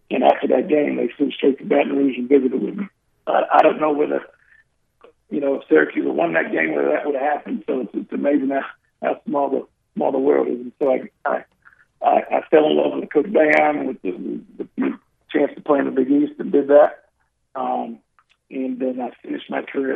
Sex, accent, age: male, American, 50-69